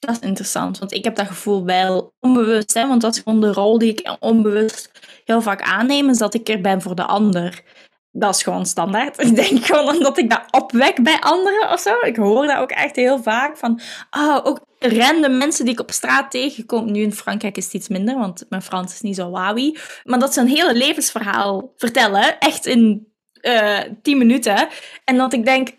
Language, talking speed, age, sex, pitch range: Dutch, 215 wpm, 20-39, female, 215-270 Hz